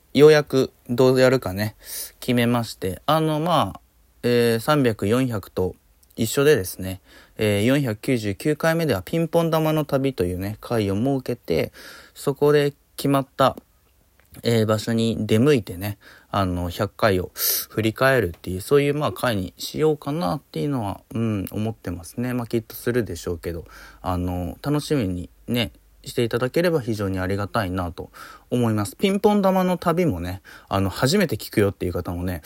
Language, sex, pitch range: Japanese, male, 95-145 Hz